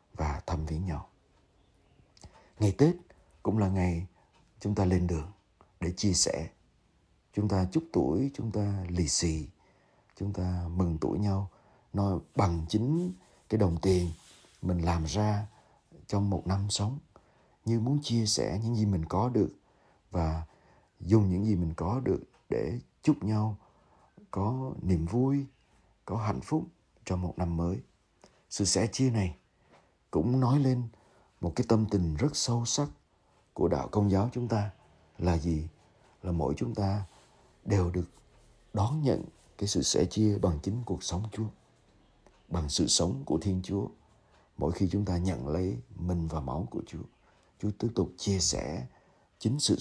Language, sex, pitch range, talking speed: Vietnamese, male, 85-110 Hz, 160 wpm